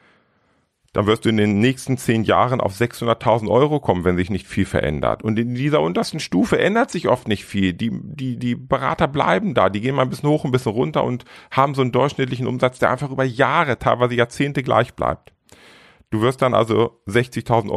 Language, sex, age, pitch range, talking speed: German, male, 40-59, 90-120 Hz, 205 wpm